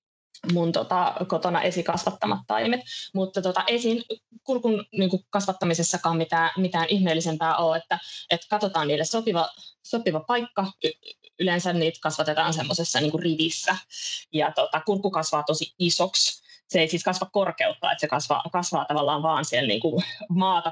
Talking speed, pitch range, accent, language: 135 wpm, 165-235 Hz, native, Finnish